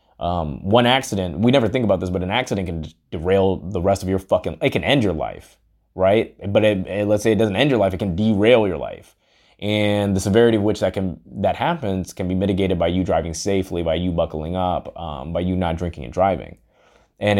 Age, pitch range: 20-39, 85-100 Hz